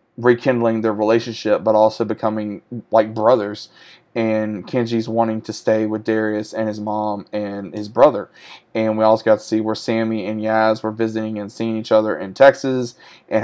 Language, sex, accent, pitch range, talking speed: English, male, American, 105-115 Hz, 180 wpm